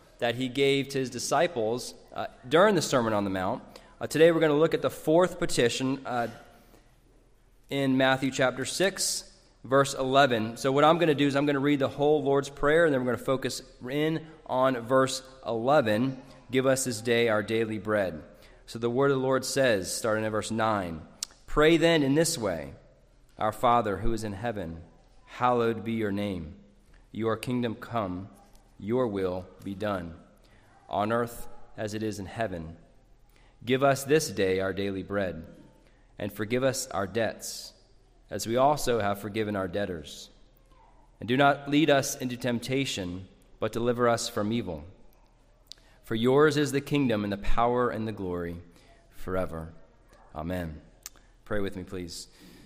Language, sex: English, male